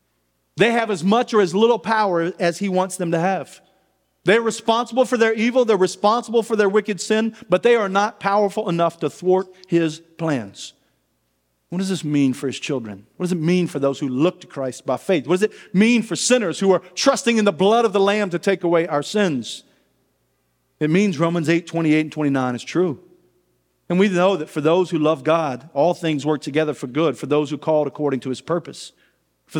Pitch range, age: 155-205 Hz, 40-59